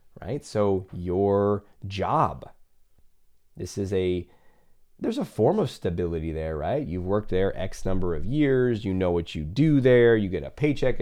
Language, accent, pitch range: English, American, 90-120 Hz